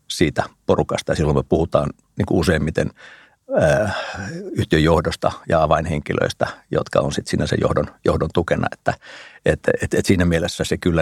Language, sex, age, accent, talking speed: Finnish, male, 50-69, native, 115 wpm